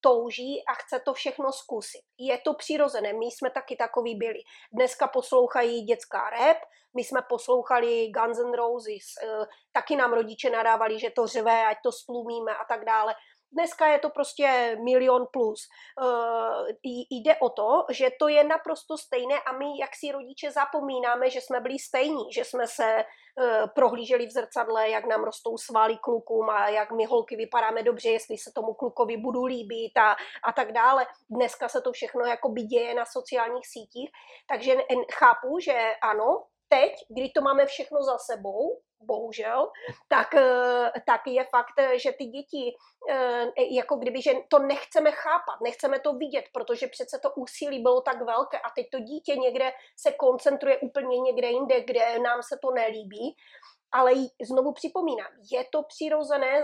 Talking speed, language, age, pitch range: 165 wpm, Czech, 30-49, 235-285 Hz